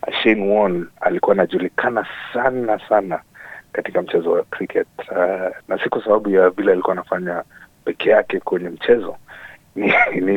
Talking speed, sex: 140 wpm, male